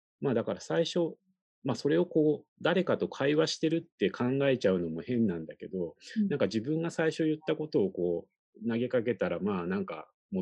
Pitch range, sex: 105-170 Hz, male